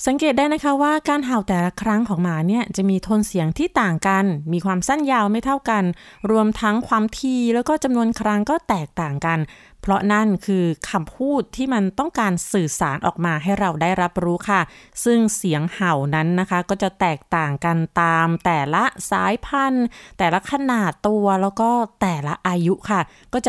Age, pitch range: 20-39, 185-240 Hz